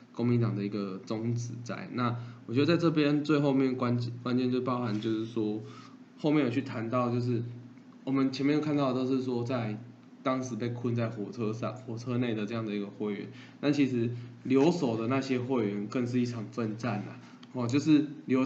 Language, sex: Chinese, male